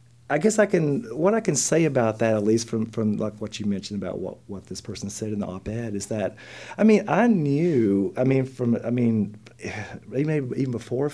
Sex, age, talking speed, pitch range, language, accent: male, 40-59, 220 wpm, 110-130 Hz, English, American